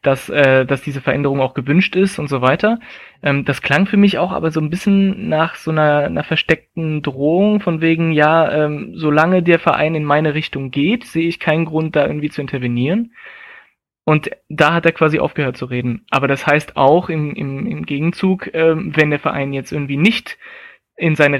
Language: German